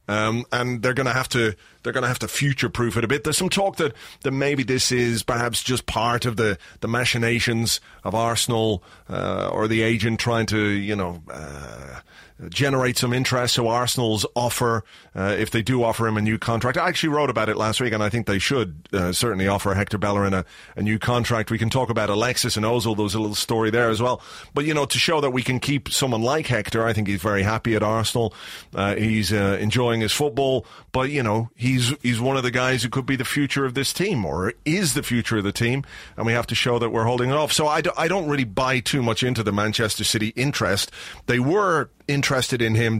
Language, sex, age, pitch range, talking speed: English, male, 30-49, 110-130 Hz, 235 wpm